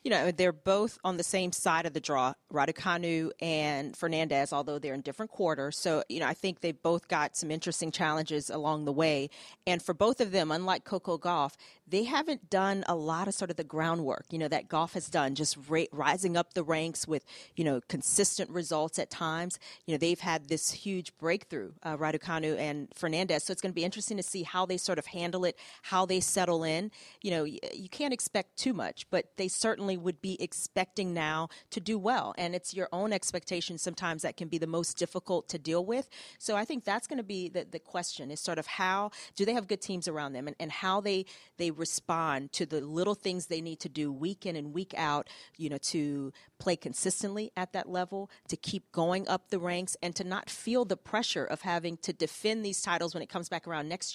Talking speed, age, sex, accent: 225 wpm, 40-59, female, American